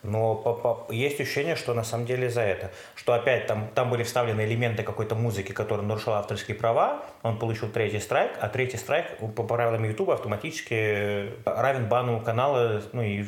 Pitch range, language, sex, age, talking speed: 100-115 Hz, Russian, male, 30-49, 175 wpm